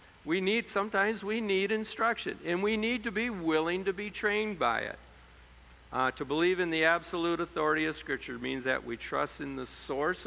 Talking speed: 195 wpm